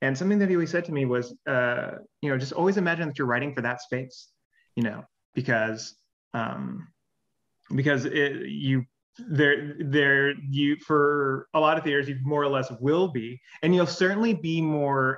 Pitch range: 125-160 Hz